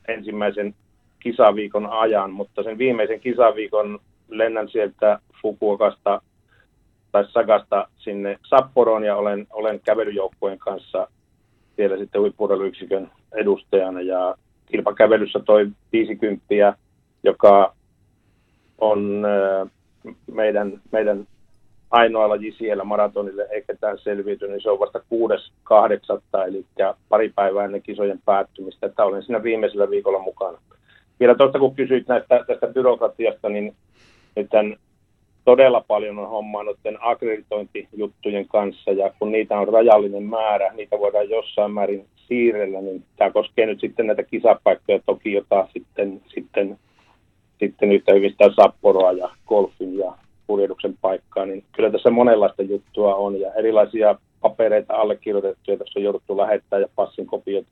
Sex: male